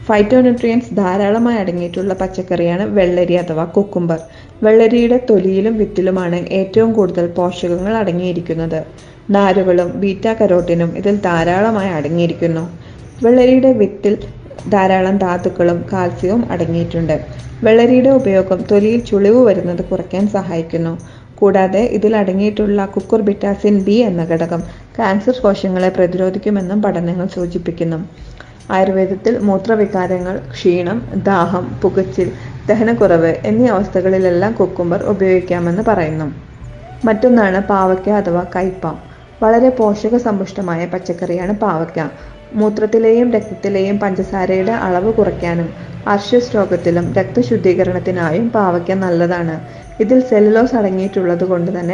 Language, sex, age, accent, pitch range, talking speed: Malayalam, female, 30-49, native, 175-210 Hz, 90 wpm